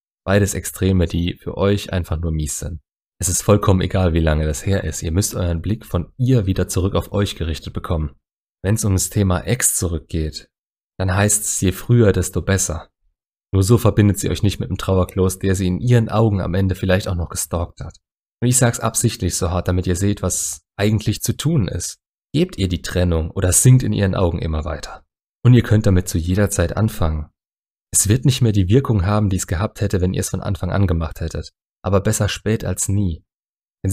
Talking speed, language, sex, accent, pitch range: 220 wpm, German, male, German, 85-105 Hz